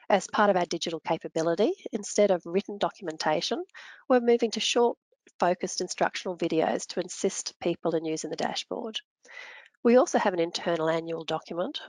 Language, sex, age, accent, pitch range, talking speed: English, female, 40-59, Australian, 170-230 Hz, 155 wpm